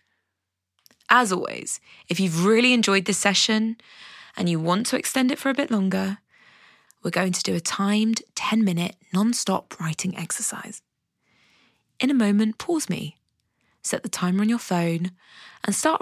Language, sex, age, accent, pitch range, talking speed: English, female, 20-39, British, 175-220 Hz, 155 wpm